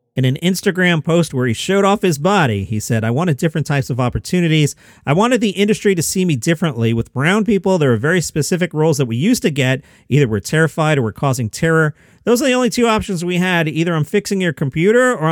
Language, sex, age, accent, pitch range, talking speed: English, male, 40-59, American, 135-180 Hz, 235 wpm